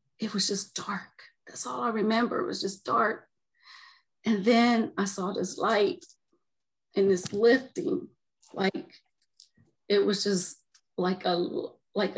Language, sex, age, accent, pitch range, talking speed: English, female, 40-59, American, 180-225 Hz, 140 wpm